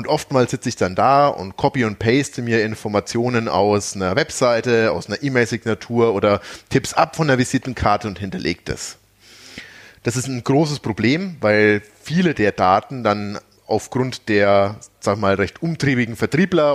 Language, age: German, 30-49